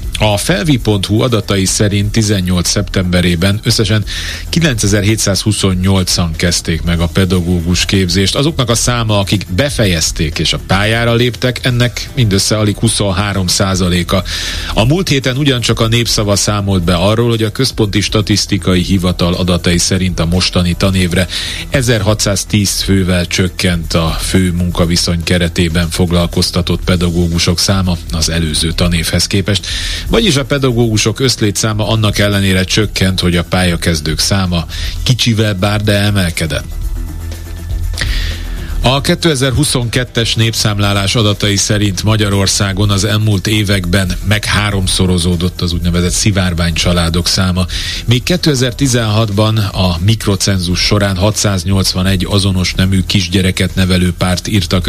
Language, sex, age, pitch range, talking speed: Hungarian, male, 40-59, 90-105 Hz, 110 wpm